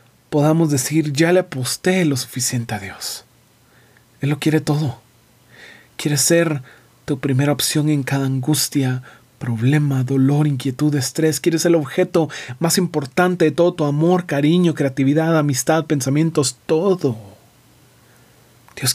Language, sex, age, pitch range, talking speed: Spanish, male, 40-59, 125-160 Hz, 130 wpm